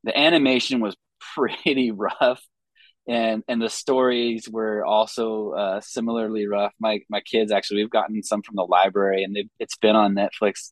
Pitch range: 100-115 Hz